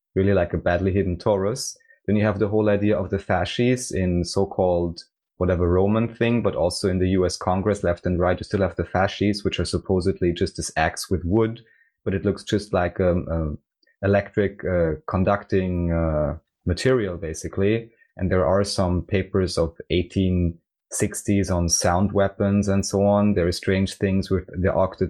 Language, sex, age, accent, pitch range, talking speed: English, male, 20-39, German, 90-100 Hz, 180 wpm